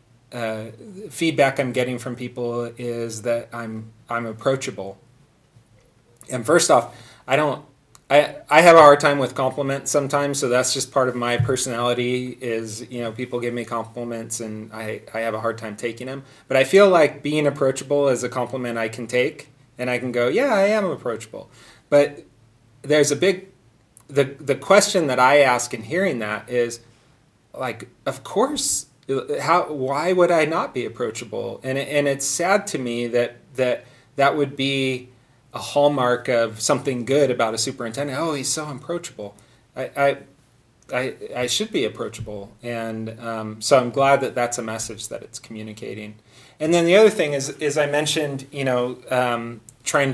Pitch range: 120-140 Hz